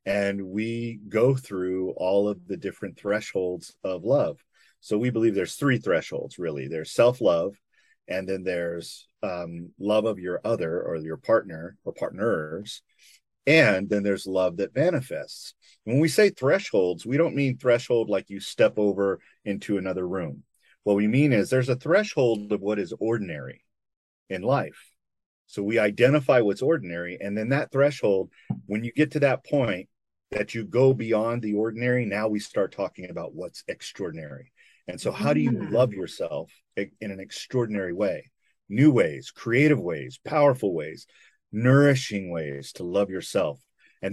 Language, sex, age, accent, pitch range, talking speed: English, male, 40-59, American, 100-130 Hz, 160 wpm